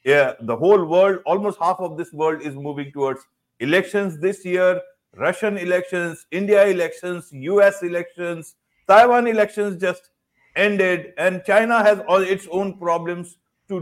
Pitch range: 145-190 Hz